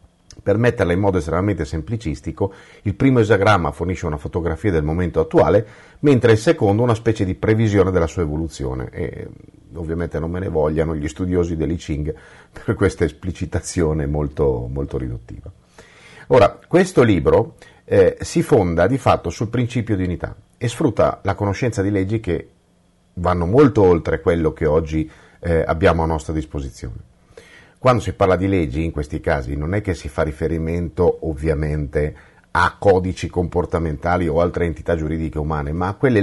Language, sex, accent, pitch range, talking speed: Italian, male, native, 80-100 Hz, 160 wpm